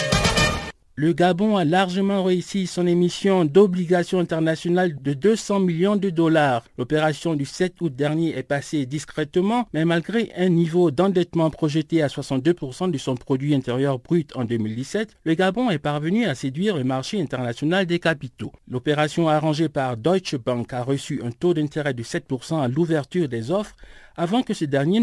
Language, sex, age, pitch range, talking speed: French, male, 60-79, 145-190 Hz, 165 wpm